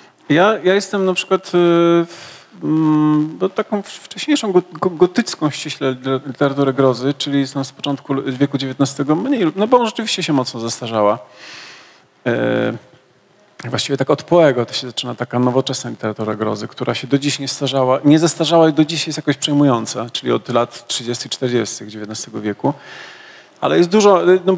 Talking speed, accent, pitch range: 165 wpm, native, 125-170 Hz